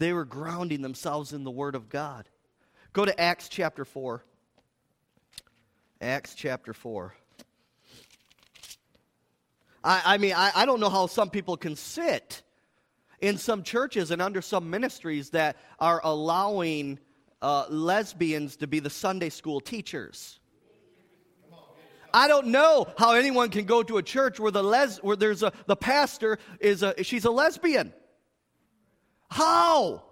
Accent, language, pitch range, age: American, English, 150-220 Hz, 40-59